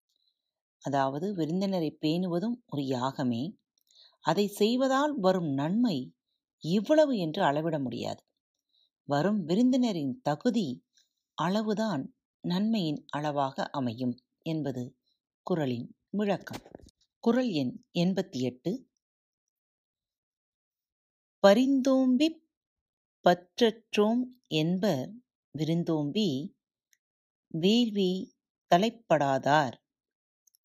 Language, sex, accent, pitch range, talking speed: Tamil, female, native, 155-230 Hz, 60 wpm